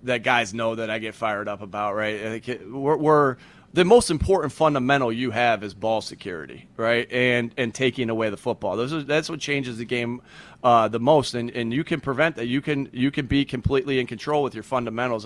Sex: male